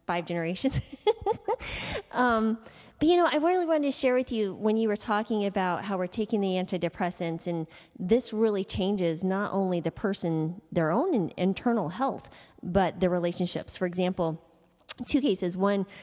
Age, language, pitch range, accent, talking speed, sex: 20-39, English, 170-215 Hz, American, 160 wpm, female